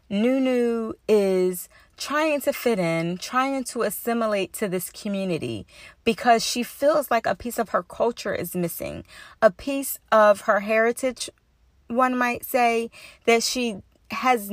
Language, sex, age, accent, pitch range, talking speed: English, female, 30-49, American, 180-240 Hz, 140 wpm